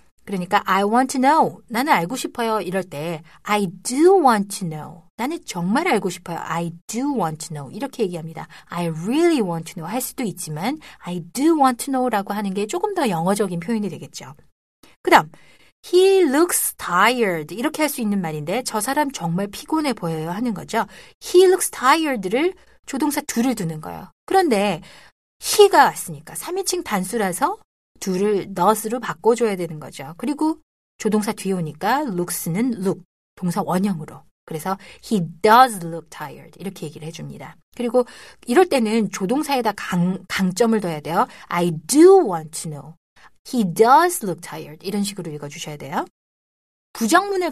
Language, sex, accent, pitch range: Korean, female, native, 175-260 Hz